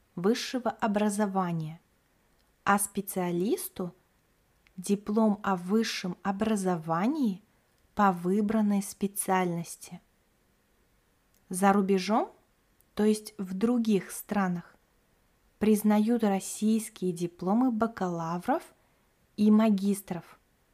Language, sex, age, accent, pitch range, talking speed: Russian, female, 20-39, native, 190-225 Hz, 70 wpm